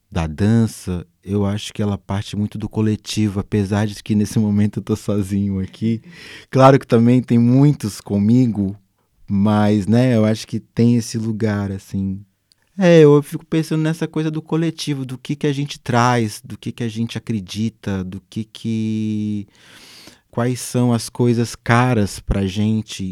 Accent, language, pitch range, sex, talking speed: Brazilian, Portuguese, 100-120 Hz, male, 165 wpm